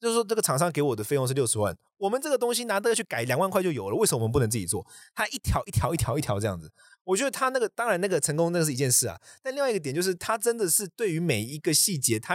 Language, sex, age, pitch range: Chinese, male, 20-39, 115-175 Hz